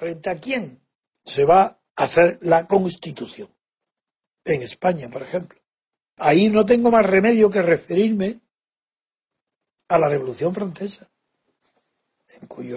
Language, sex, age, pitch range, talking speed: Spanish, male, 60-79, 180-240 Hz, 120 wpm